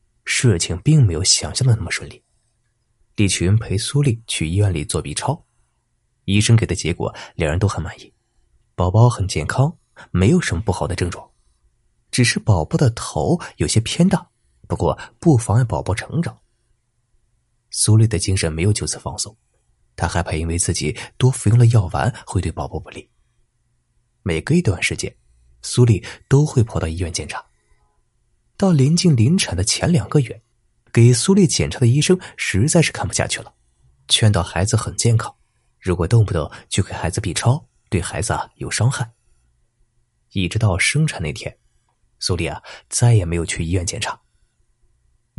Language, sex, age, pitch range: Chinese, male, 20-39, 90-120 Hz